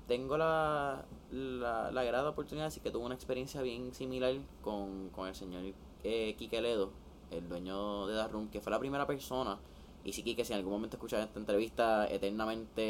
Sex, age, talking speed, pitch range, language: male, 20-39, 200 wpm, 95-140 Hz, Spanish